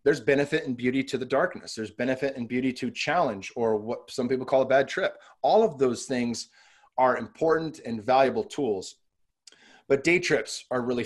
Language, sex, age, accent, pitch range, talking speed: English, male, 30-49, American, 115-135 Hz, 190 wpm